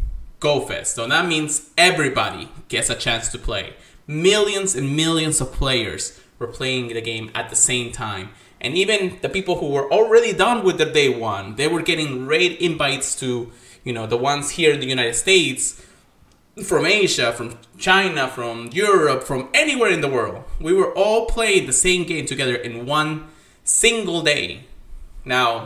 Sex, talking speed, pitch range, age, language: male, 175 wpm, 120-190 Hz, 20-39, English